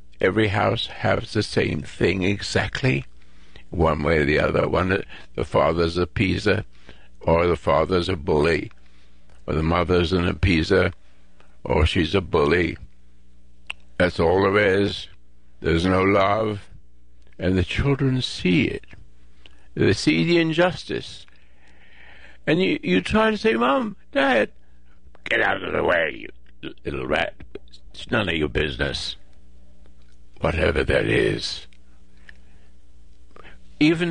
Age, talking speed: 60-79, 125 wpm